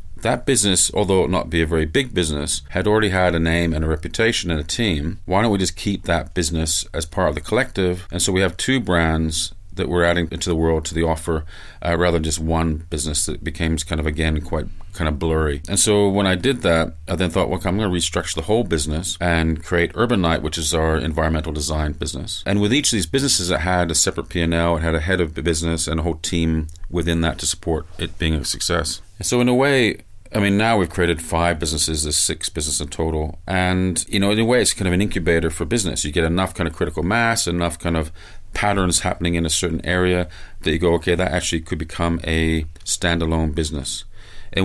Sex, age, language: male, 40-59, English